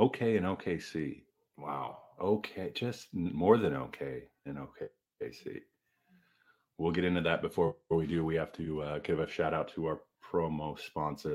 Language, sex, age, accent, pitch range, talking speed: English, male, 30-49, American, 75-105 Hz, 160 wpm